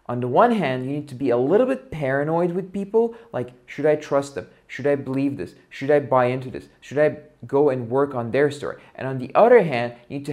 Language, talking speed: English, 255 wpm